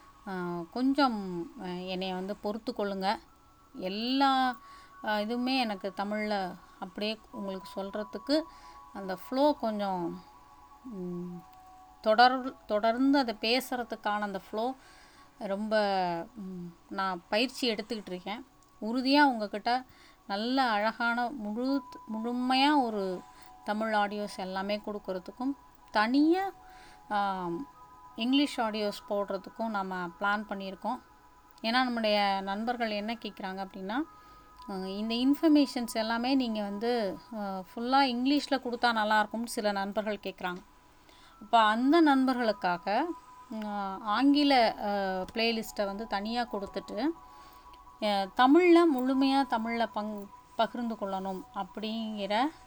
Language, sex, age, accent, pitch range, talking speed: Tamil, female, 30-49, native, 195-250 Hz, 85 wpm